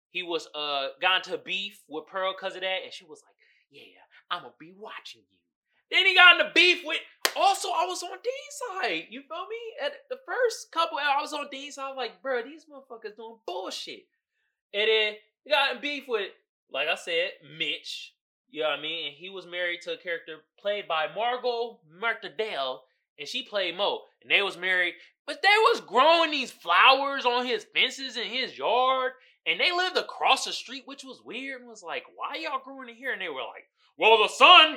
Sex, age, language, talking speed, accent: male, 20-39, English, 210 wpm, American